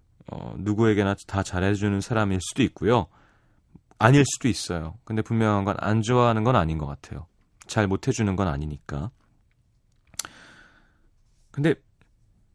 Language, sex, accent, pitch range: Korean, male, native, 95-125 Hz